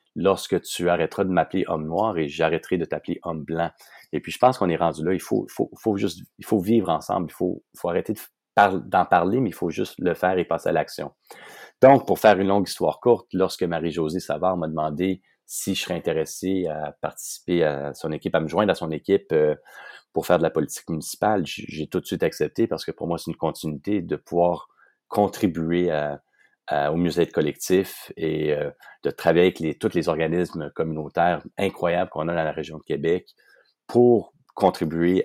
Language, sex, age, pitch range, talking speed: French, male, 40-59, 75-90 Hz, 205 wpm